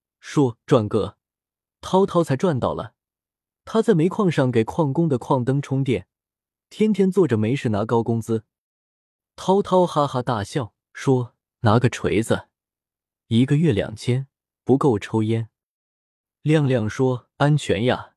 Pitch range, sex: 105-150 Hz, male